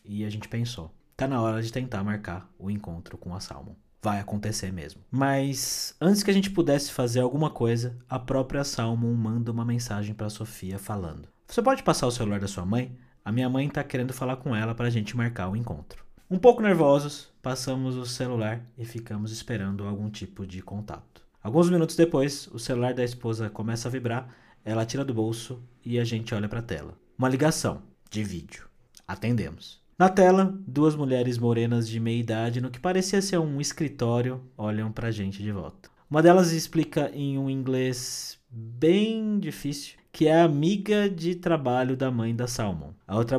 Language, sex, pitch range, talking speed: Portuguese, male, 110-140 Hz, 185 wpm